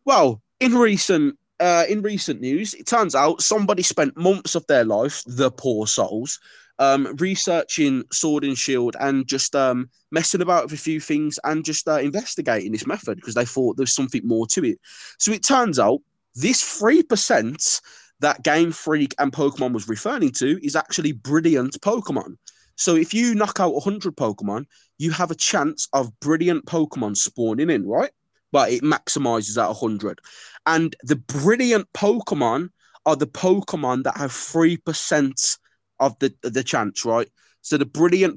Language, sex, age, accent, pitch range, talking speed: English, male, 20-39, British, 125-175 Hz, 165 wpm